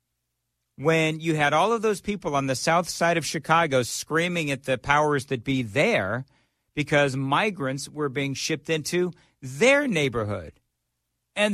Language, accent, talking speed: English, American, 150 wpm